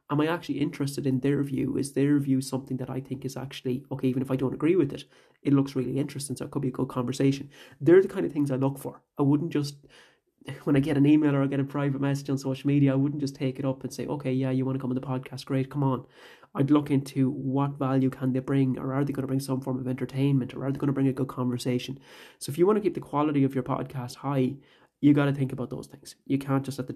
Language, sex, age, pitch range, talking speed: English, male, 30-49, 130-145 Hz, 290 wpm